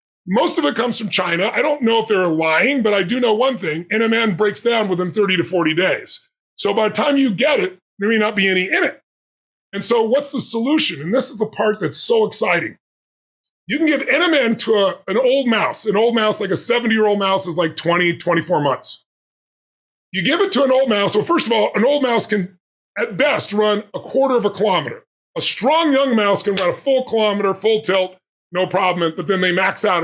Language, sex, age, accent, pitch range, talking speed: English, female, 30-49, American, 190-250 Hz, 230 wpm